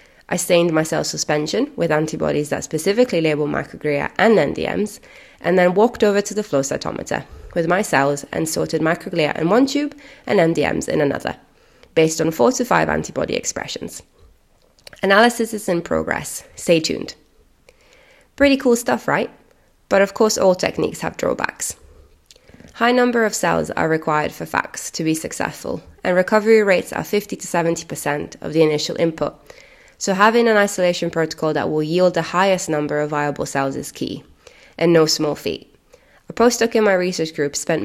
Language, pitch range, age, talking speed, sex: English, 150-200 Hz, 20-39, 165 wpm, female